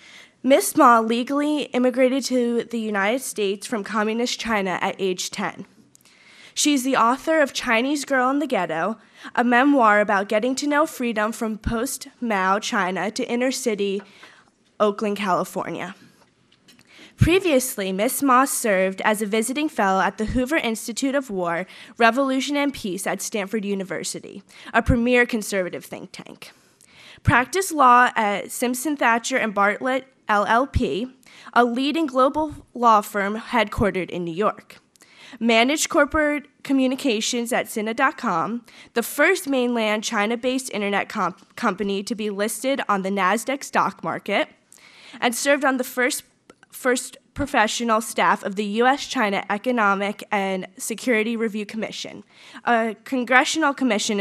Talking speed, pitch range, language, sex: 130 wpm, 205-260 Hz, English, female